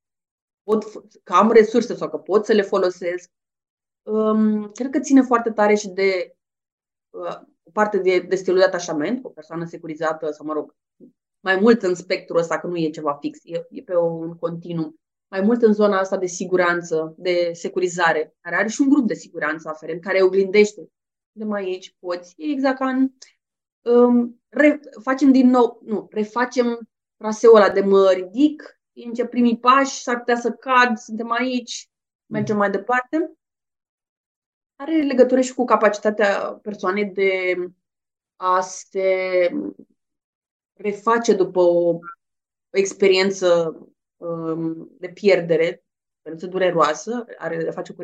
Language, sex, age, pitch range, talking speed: Romanian, female, 20-39, 180-235 Hz, 150 wpm